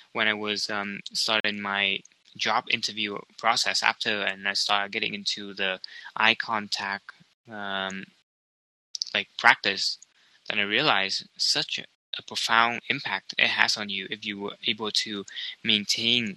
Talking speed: 140 wpm